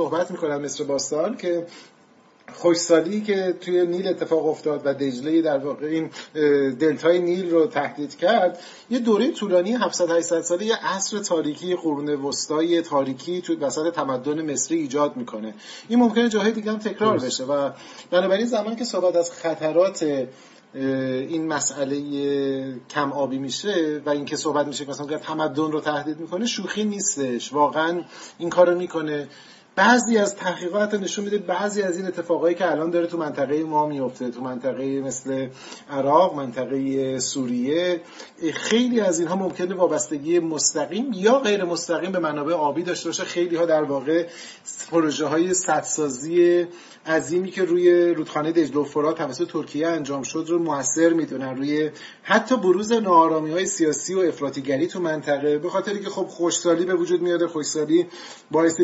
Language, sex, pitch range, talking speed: Persian, male, 145-180 Hz, 150 wpm